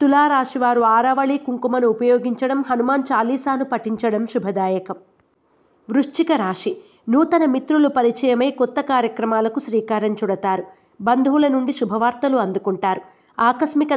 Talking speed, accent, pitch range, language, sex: 95 wpm, native, 225-275 Hz, Telugu, female